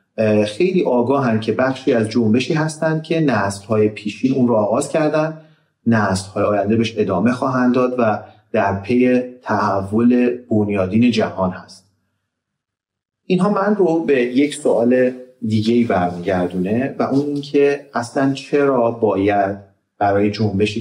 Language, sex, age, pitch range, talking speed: Persian, male, 40-59, 105-130 Hz, 125 wpm